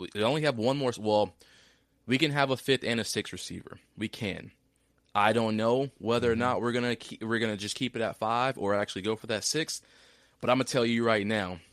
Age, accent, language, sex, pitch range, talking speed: 20-39, American, English, male, 100-125 Hz, 240 wpm